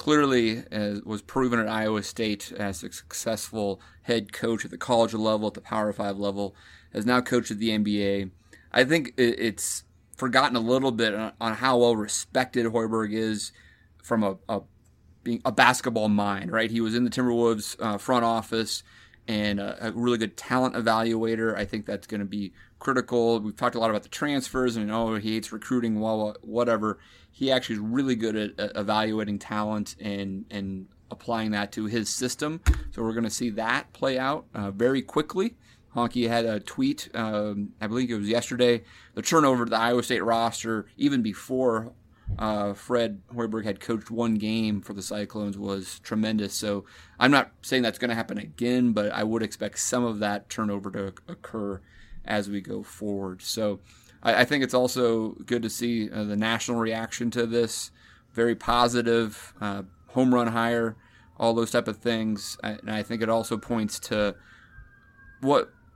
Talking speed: 175 wpm